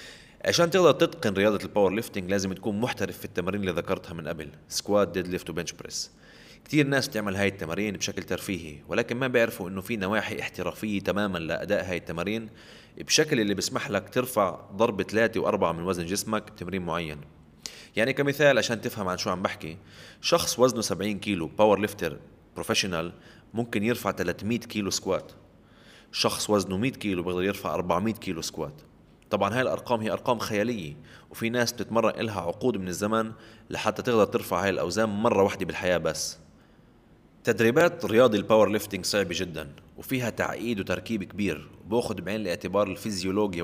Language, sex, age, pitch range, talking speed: Arabic, male, 20-39, 95-110 Hz, 160 wpm